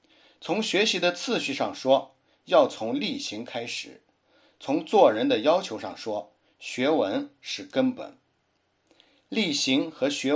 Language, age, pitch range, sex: Chinese, 60-79, 175-285 Hz, male